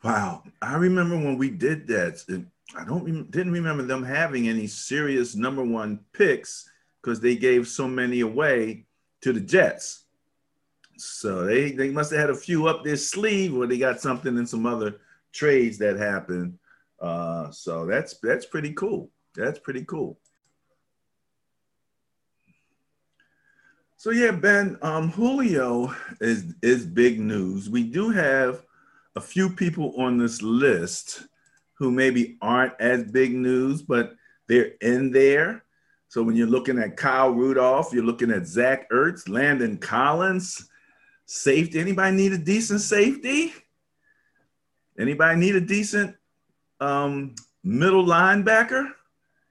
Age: 50-69